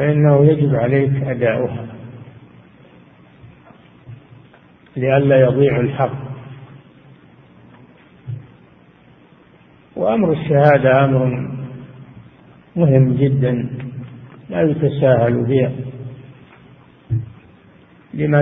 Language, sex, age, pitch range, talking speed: Arabic, male, 50-69, 125-150 Hz, 50 wpm